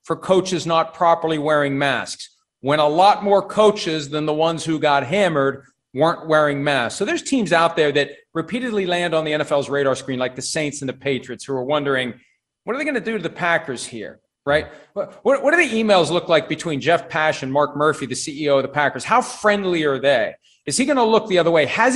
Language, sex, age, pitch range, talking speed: English, male, 40-59, 145-210 Hz, 230 wpm